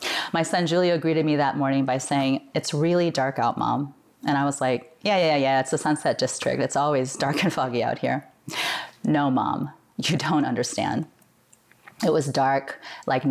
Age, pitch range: 30-49, 145-180 Hz